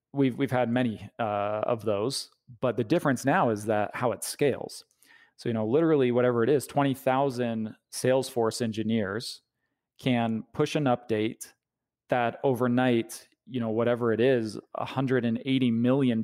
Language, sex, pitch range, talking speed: English, male, 110-130 Hz, 145 wpm